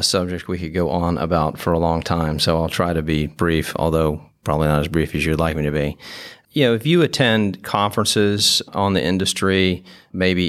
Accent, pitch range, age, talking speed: American, 80-95 Hz, 40-59, 210 wpm